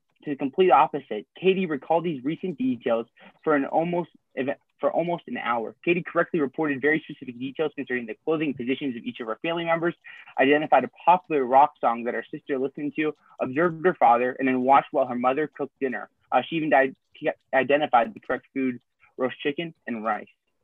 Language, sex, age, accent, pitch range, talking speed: English, male, 20-39, American, 130-170 Hz, 185 wpm